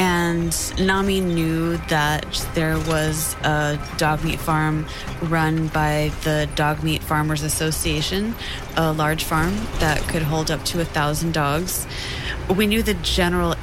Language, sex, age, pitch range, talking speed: English, female, 20-39, 155-170 Hz, 140 wpm